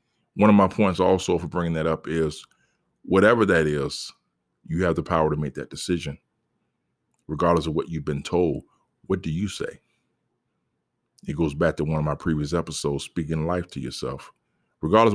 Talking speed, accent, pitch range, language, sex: 180 wpm, American, 75-90 Hz, English, male